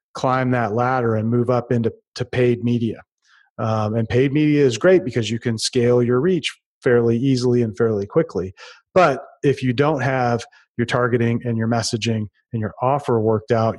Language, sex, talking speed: English, male, 185 wpm